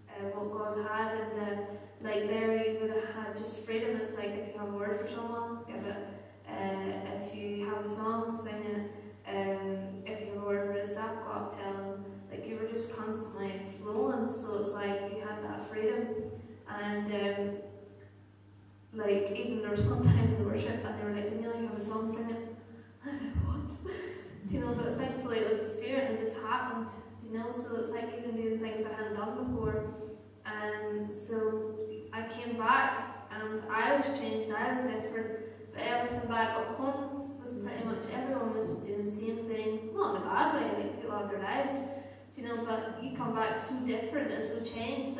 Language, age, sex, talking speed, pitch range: English, 10-29, female, 210 wpm, 205-240 Hz